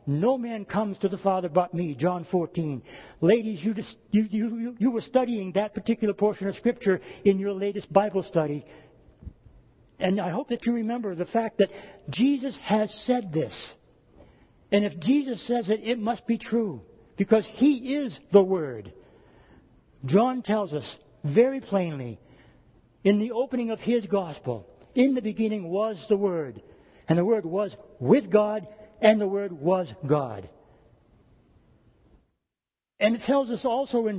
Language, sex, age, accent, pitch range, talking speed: English, male, 60-79, American, 185-230 Hz, 150 wpm